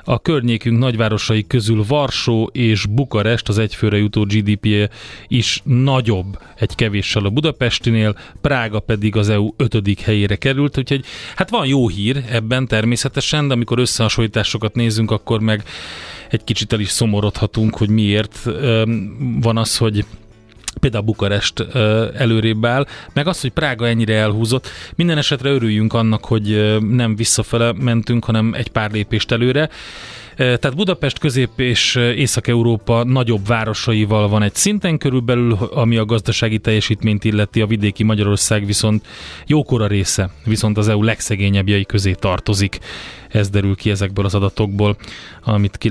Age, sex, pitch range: 30-49, male, 105-120 Hz